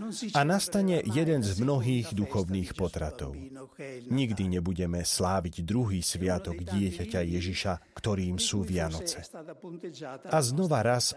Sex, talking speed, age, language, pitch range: male, 105 wpm, 40-59, Slovak, 100-155 Hz